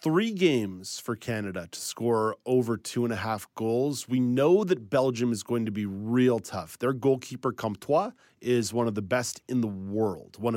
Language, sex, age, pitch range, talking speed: English, male, 30-49, 110-140 Hz, 195 wpm